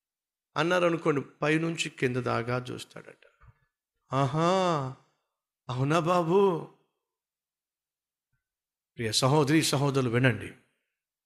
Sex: male